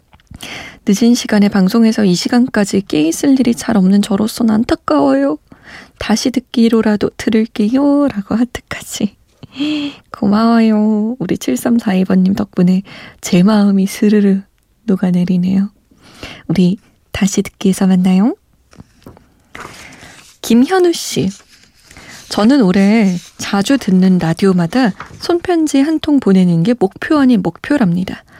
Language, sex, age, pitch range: Korean, female, 20-39, 195-245 Hz